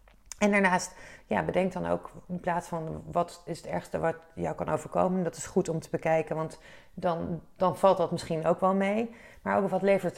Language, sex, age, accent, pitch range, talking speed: Dutch, female, 30-49, Dutch, 170-205 Hz, 205 wpm